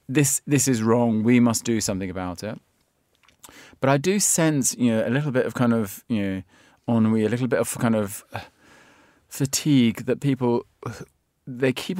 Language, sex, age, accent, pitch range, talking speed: English, male, 30-49, British, 105-130 Hz, 185 wpm